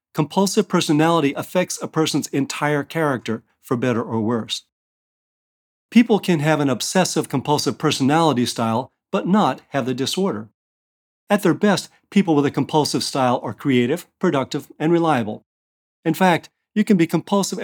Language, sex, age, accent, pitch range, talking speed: English, male, 40-59, American, 120-160 Hz, 145 wpm